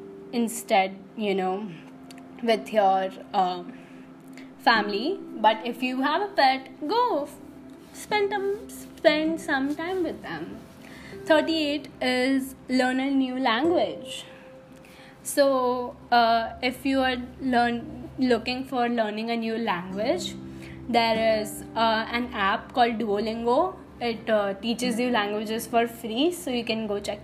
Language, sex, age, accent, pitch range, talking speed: English, female, 20-39, Indian, 210-275 Hz, 125 wpm